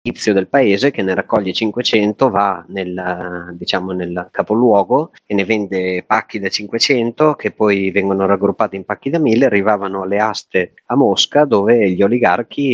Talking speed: 155 wpm